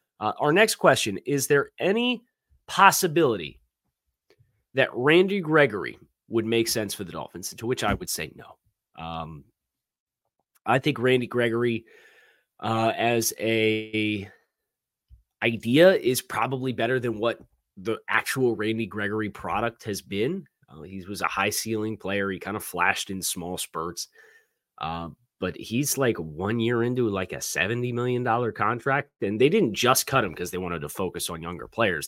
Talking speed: 155 wpm